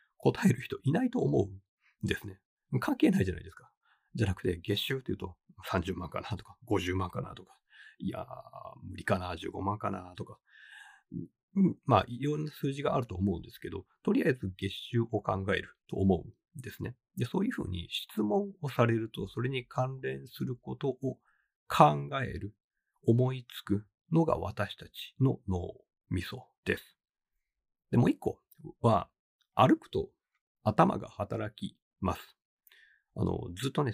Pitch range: 95-125 Hz